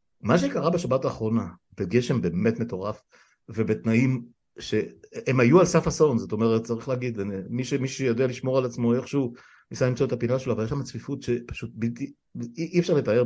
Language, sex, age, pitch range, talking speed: Hebrew, male, 60-79, 110-135 Hz, 175 wpm